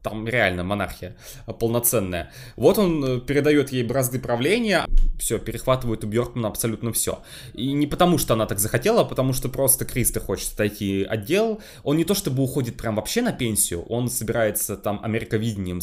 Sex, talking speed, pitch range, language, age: male, 165 wpm, 110-150 Hz, Russian, 20-39